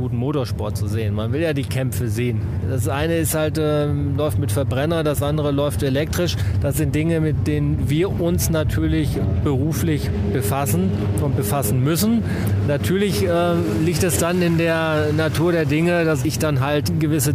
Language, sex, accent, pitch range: German, male, German, 105-160 Hz